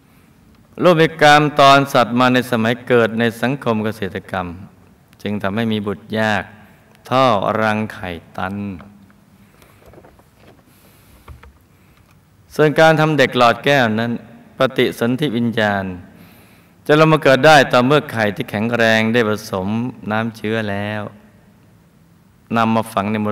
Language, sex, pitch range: Thai, male, 100-125 Hz